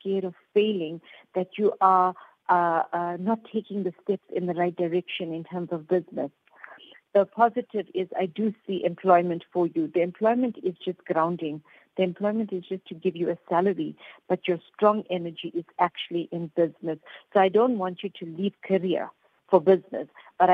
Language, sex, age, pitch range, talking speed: English, female, 50-69, 175-195 Hz, 180 wpm